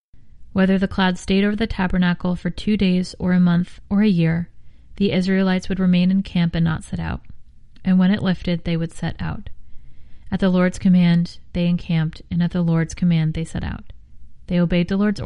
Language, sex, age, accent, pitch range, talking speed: English, female, 30-49, American, 175-190 Hz, 205 wpm